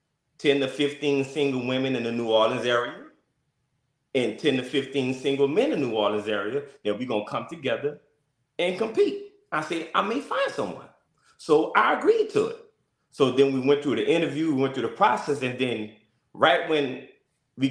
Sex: male